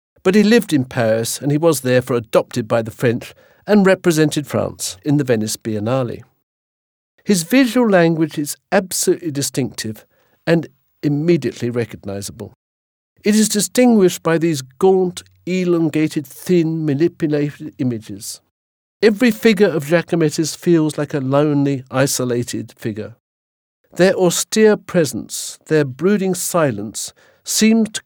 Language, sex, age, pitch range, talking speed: English, male, 50-69, 120-180 Hz, 120 wpm